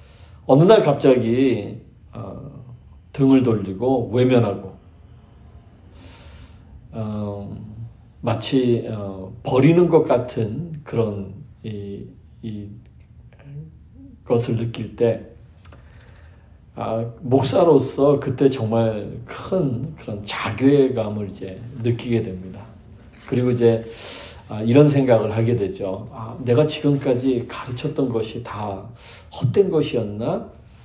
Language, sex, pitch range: Korean, male, 100-125 Hz